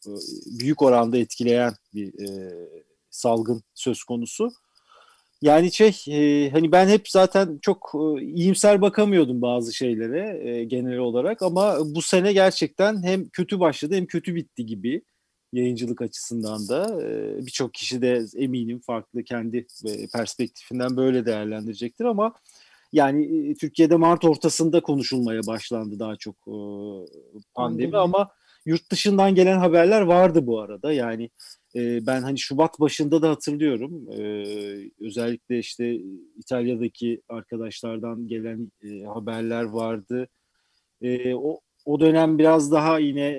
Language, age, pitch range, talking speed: Turkish, 40-59, 115-165 Hz, 125 wpm